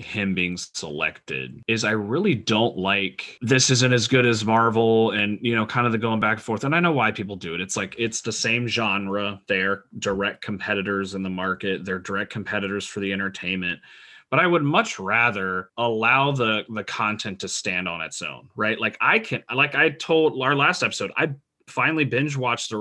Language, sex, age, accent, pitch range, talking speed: English, male, 30-49, American, 100-125 Hz, 210 wpm